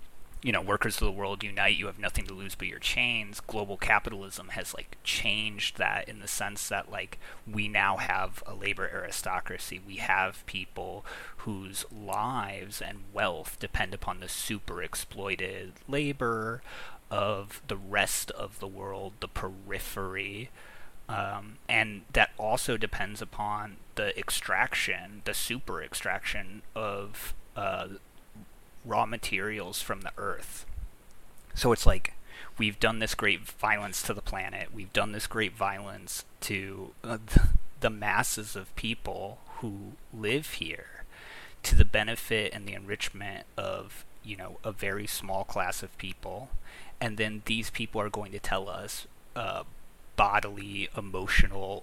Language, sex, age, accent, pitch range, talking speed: English, male, 30-49, American, 100-115 Hz, 140 wpm